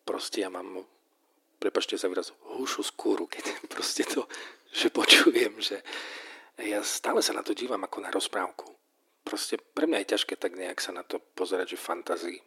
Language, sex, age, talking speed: Slovak, male, 40-59, 175 wpm